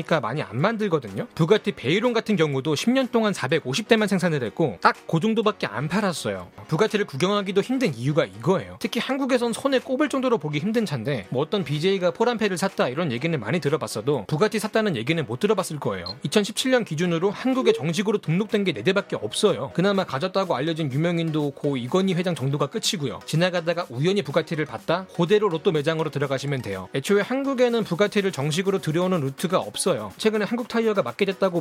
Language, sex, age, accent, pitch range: Korean, male, 30-49, native, 155-220 Hz